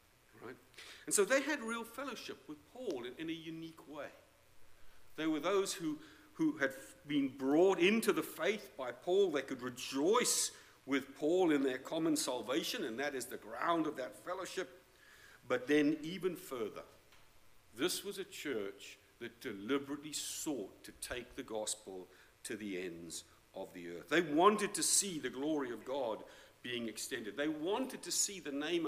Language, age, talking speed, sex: English, 50-69, 170 wpm, male